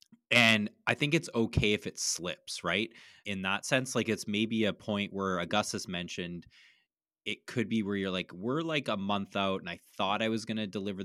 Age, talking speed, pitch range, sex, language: 20-39, 210 wpm, 90-115 Hz, male, English